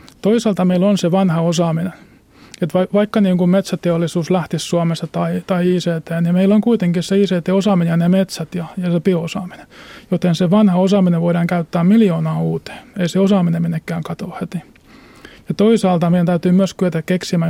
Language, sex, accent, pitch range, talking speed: Finnish, male, native, 170-190 Hz, 170 wpm